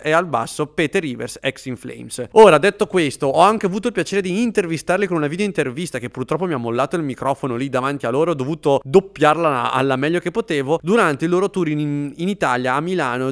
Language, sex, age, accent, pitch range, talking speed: English, male, 30-49, Italian, 130-165 Hz, 220 wpm